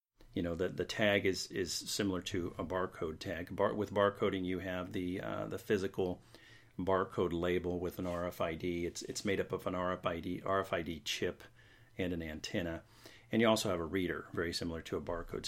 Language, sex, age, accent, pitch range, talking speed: English, male, 40-59, American, 90-110 Hz, 190 wpm